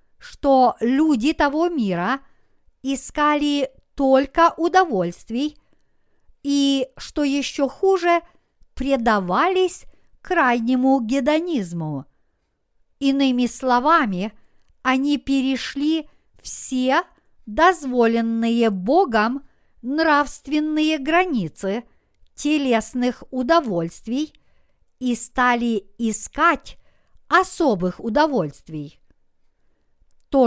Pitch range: 230-305 Hz